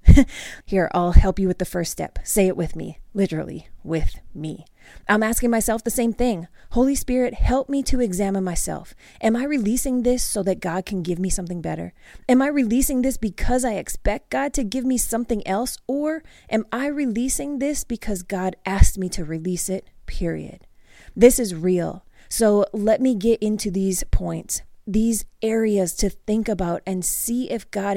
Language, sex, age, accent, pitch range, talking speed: English, female, 20-39, American, 185-245 Hz, 180 wpm